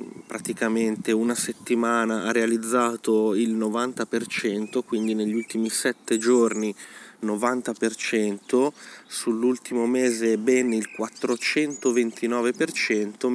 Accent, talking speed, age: native, 80 wpm, 20-39